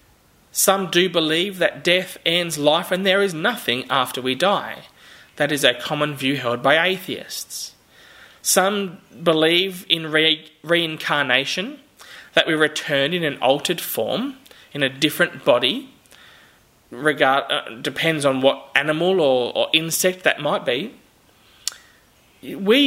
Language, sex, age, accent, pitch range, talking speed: English, male, 20-39, Australian, 150-195 Hz, 135 wpm